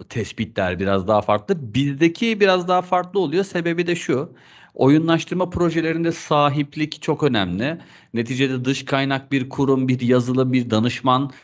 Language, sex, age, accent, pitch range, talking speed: Turkish, male, 40-59, native, 115-150 Hz, 135 wpm